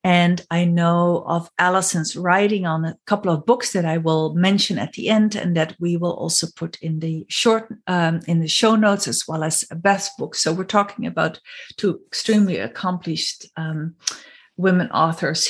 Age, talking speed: 50-69, 180 wpm